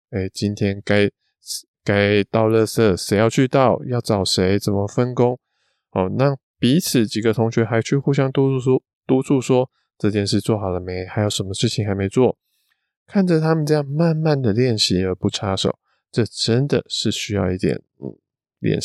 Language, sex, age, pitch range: Chinese, male, 20-39, 100-135 Hz